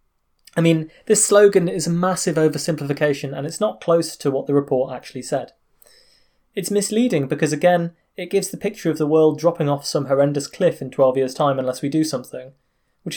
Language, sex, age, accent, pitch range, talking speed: English, male, 20-39, British, 130-165 Hz, 195 wpm